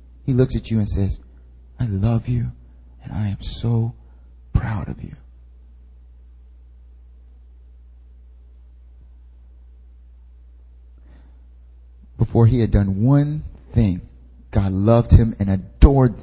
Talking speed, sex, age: 100 wpm, male, 30-49